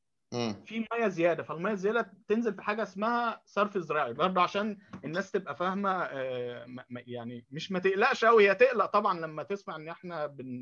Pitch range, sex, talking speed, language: 150-205 Hz, male, 160 wpm, Arabic